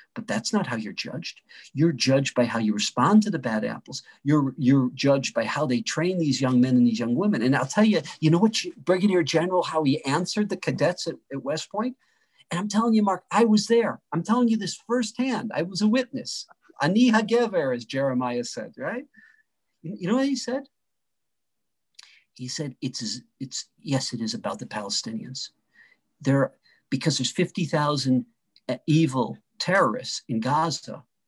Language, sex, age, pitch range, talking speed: English, male, 50-69, 125-185 Hz, 180 wpm